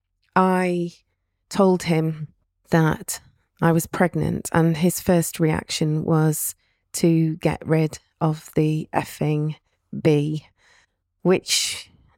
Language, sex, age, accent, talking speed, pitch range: English, female, 30-49, British, 100 wpm, 140-170 Hz